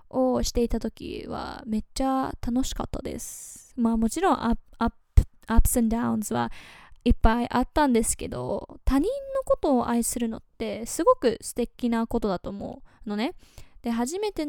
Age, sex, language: 10-29, female, Japanese